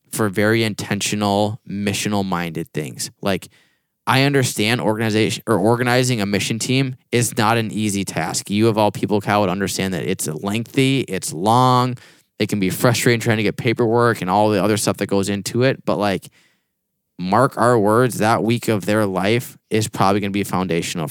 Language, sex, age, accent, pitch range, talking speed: English, male, 10-29, American, 105-125 Hz, 180 wpm